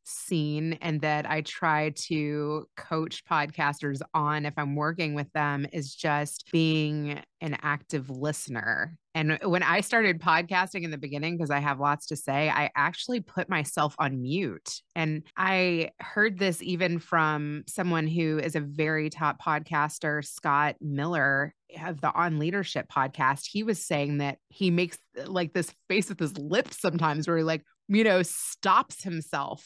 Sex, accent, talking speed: female, American, 160 wpm